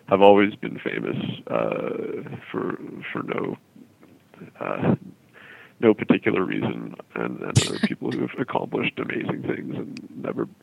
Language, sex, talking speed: English, male, 135 wpm